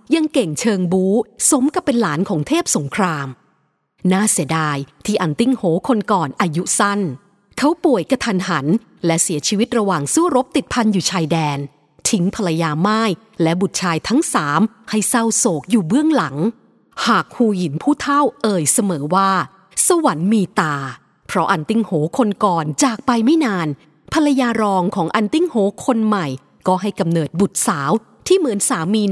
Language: English